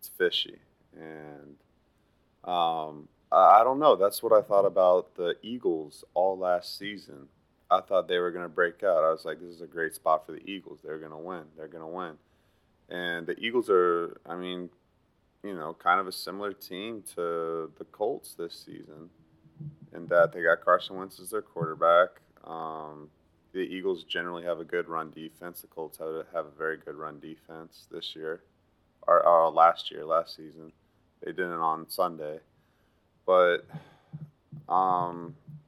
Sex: male